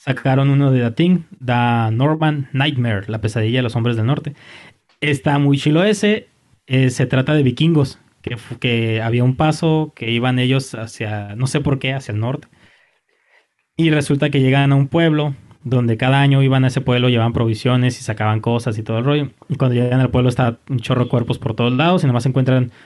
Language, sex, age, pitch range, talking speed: Spanish, male, 20-39, 120-145 Hz, 205 wpm